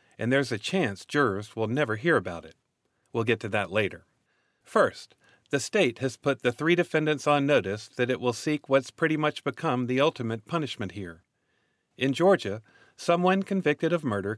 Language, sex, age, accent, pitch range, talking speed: English, male, 40-59, American, 110-140 Hz, 180 wpm